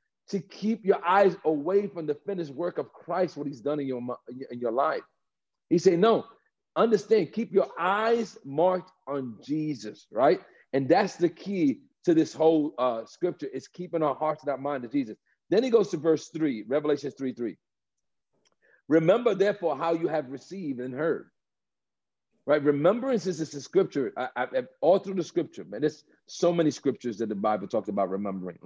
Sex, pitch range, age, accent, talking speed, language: male, 130-190 Hz, 40-59, American, 180 wpm, English